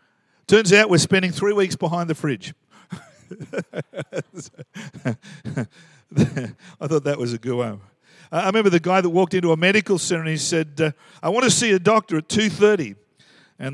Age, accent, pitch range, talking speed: 50-69, Australian, 145-185 Hz, 165 wpm